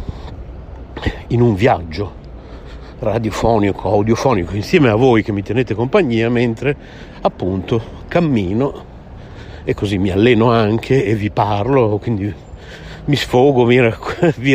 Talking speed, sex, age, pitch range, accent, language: 110 wpm, male, 60-79, 90-120 Hz, native, Italian